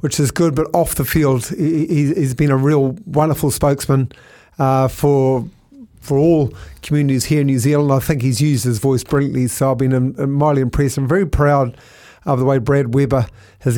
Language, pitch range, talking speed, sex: English, 130-150 Hz, 185 wpm, male